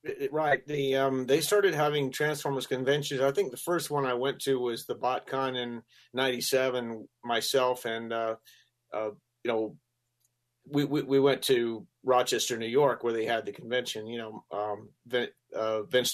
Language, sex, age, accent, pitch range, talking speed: English, male, 40-59, American, 115-135 Hz, 170 wpm